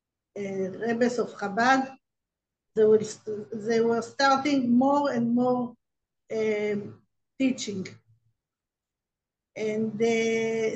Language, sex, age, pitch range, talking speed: English, female, 50-69, 210-255 Hz, 90 wpm